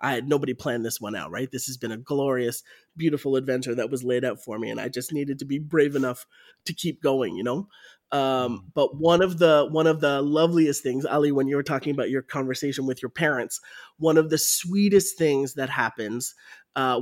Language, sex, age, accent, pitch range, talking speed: English, male, 30-49, American, 130-165 Hz, 220 wpm